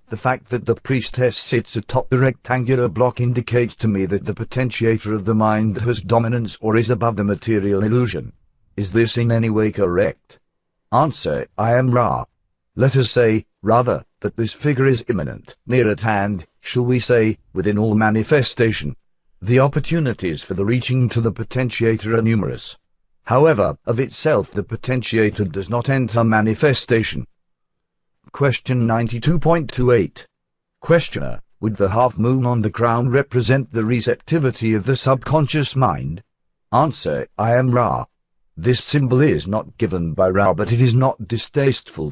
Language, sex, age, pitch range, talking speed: English, male, 50-69, 110-130 Hz, 150 wpm